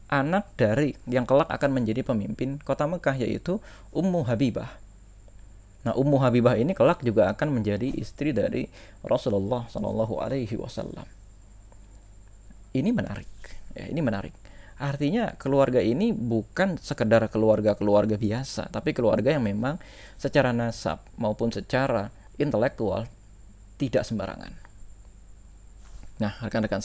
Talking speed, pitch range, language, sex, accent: 110 wpm, 100-125 Hz, Indonesian, male, native